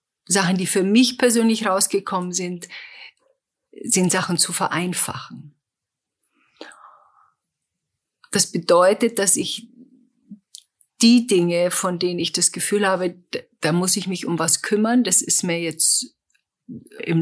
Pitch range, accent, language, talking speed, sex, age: 160-210 Hz, German, German, 120 wpm, female, 50-69